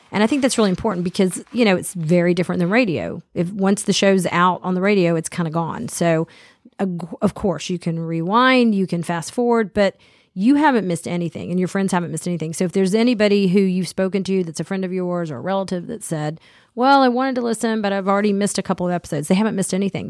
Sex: female